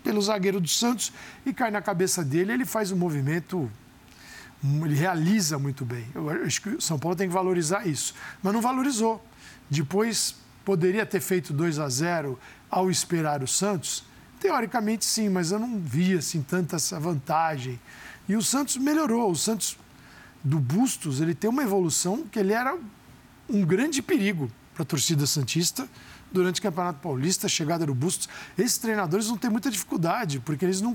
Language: Portuguese